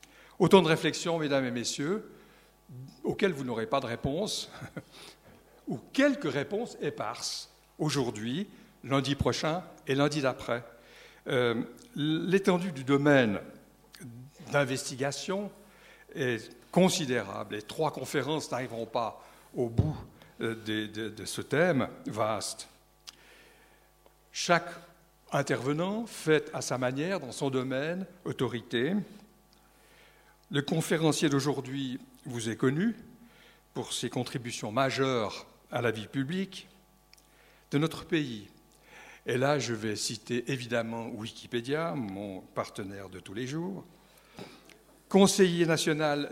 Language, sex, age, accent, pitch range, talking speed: French, male, 60-79, French, 125-170 Hz, 110 wpm